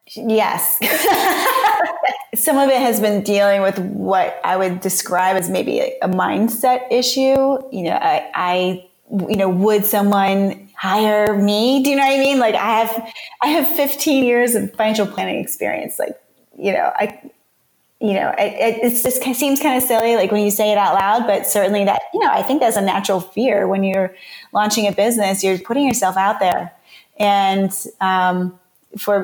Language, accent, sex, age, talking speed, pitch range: English, American, female, 30-49, 185 wpm, 195-240 Hz